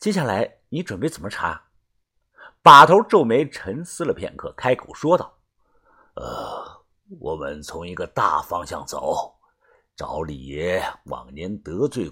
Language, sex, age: Chinese, male, 50-69